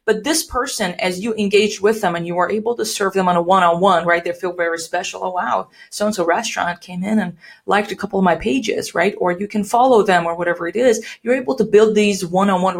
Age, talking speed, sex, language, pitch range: 30-49, 245 wpm, female, English, 175-210 Hz